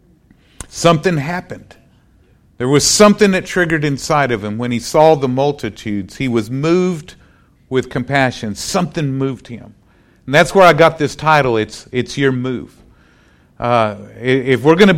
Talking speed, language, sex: 155 wpm, English, male